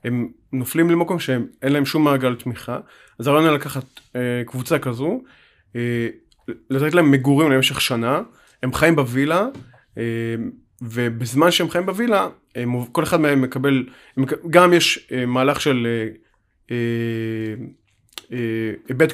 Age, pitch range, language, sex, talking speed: 30-49, 125-155 Hz, Hebrew, male, 115 wpm